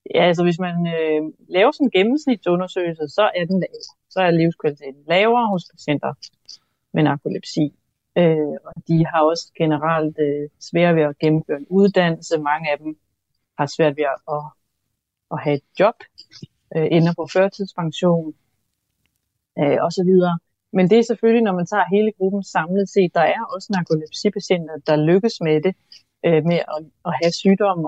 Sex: female